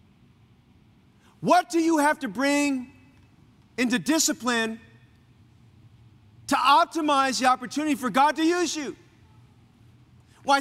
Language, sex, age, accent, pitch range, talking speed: English, male, 40-59, American, 205-250 Hz, 100 wpm